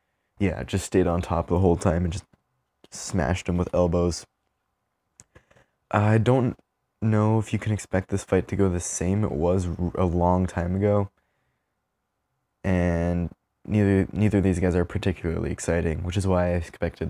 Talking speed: 165 wpm